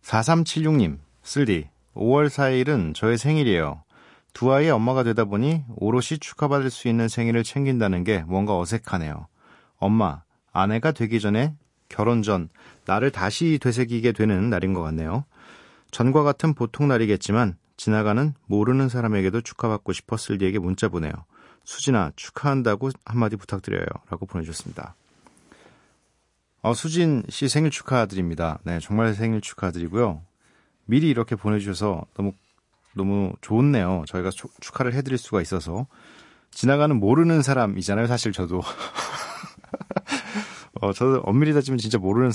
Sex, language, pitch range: male, Korean, 95-130 Hz